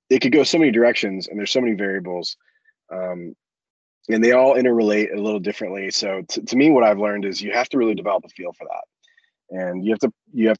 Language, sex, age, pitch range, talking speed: English, male, 20-39, 95-115 Hz, 240 wpm